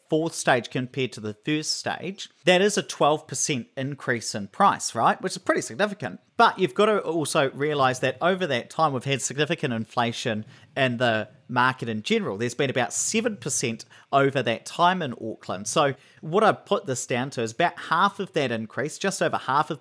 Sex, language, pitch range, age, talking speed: male, English, 120-175 Hz, 40-59, 195 wpm